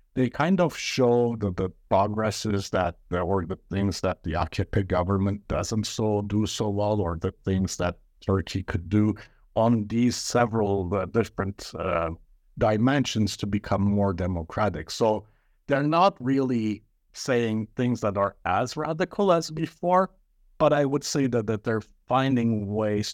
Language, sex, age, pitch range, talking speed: English, male, 60-79, 95-115 Hz, 155 wpm